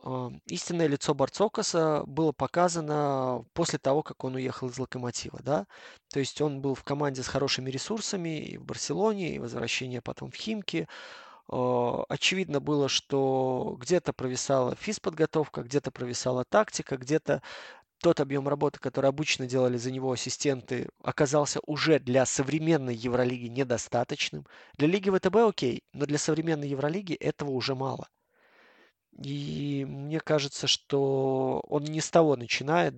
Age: 20-39